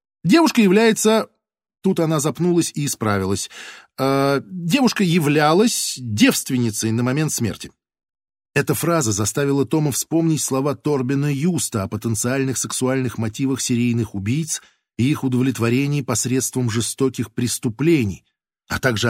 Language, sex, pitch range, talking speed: Russian, male, 120-160 Hz, 110 wpm